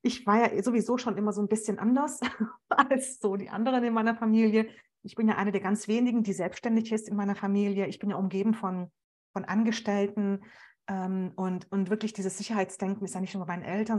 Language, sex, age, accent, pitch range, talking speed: German, female, 30-49, German, 200-245 Hz, 210 wpm